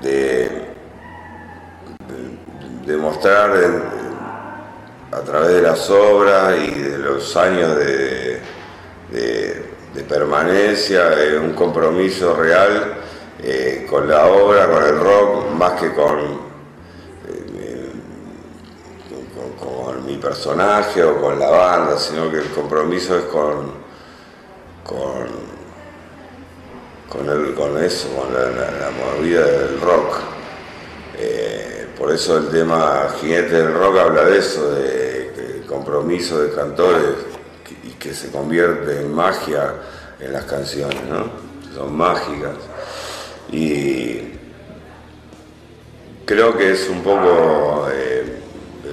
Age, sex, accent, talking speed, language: 50-69, male, Argentinian, 120 wpm, Spanish